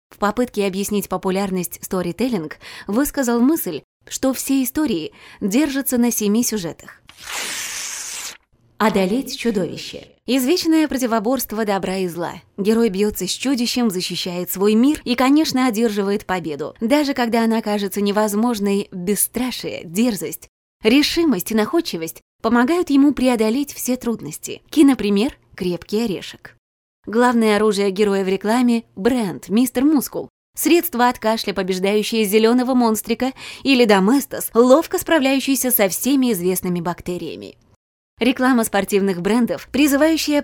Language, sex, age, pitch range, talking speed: Russian, female, 20-39, 200-260 Hz, 115 wpm